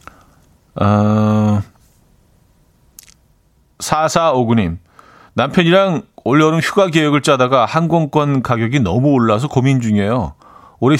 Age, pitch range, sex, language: 40-59, 105-145 Hz, male, Korean